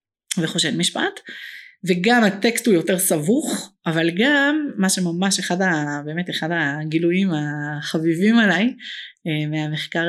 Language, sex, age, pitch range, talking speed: Hebrew, female, 30-49, 165-235 Hz, 115 wpm